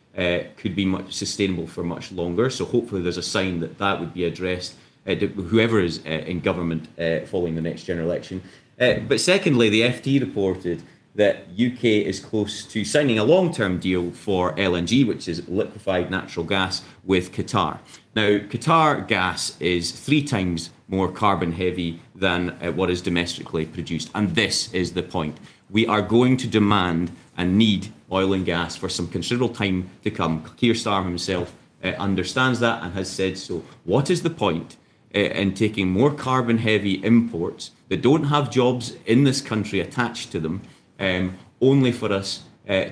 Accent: British